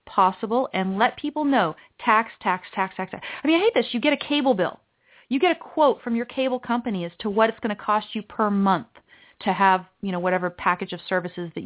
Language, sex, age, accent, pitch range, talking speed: English, female, 30-49, American, 190-250 Hz, 240 wpm